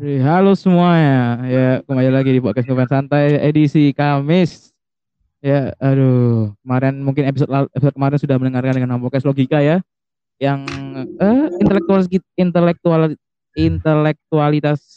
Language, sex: Indonesian, male